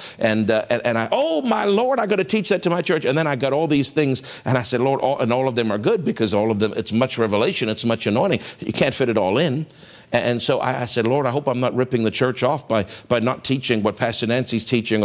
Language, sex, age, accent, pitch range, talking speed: English, male, 60-79, American, 115-145 Hz, 285 wpm